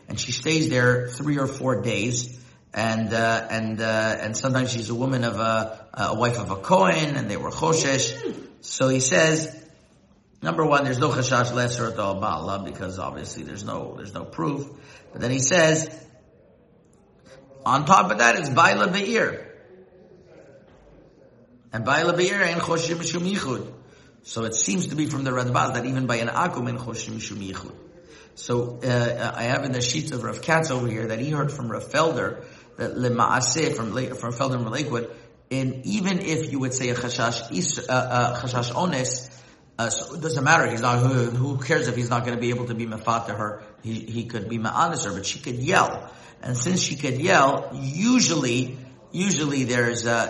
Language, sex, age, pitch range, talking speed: English, male, 50-69, 115-145 Hz, 180 wpm